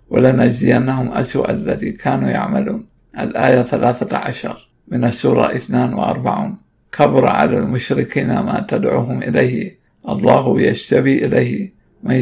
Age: 60-79